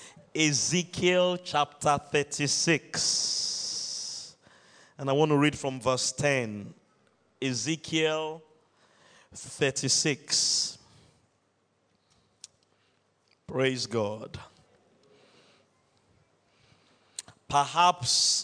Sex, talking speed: male, 50 wpm